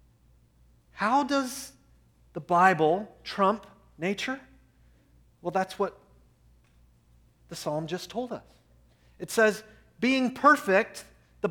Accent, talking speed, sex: American, 100 wpm, male